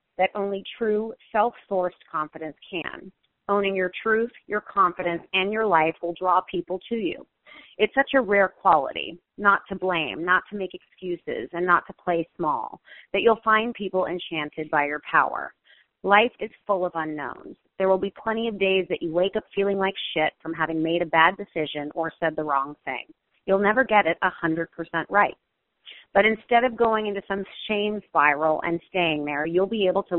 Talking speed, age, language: 185 wpm, 30-49, English